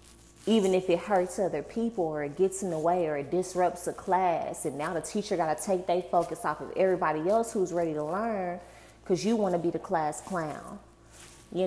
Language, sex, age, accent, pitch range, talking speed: English, female, 20-39, American, 170-225 Hz, 210 wpm